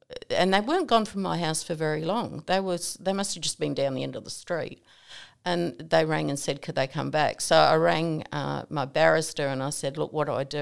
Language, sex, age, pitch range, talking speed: English, female, 50-69, 145-180 Hz, 260 wpm